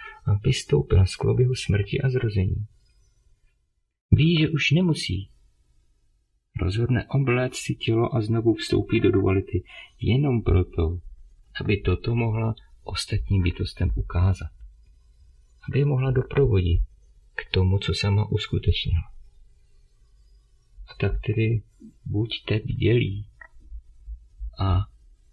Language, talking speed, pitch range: Czech, 100 wpm, 80-115 Hz